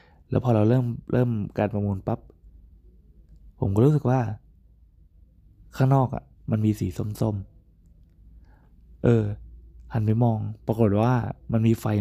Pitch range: 90-115 Hz